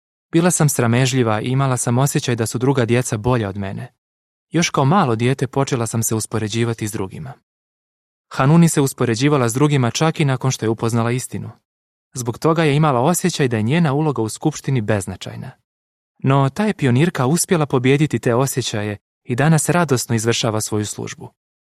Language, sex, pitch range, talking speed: Croatian, male, 110-150 Hz, 170 wpm